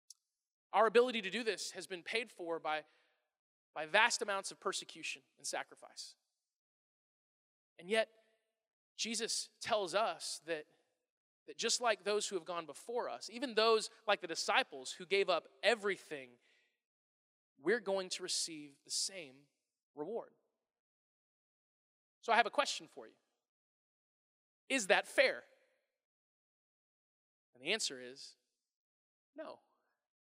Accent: American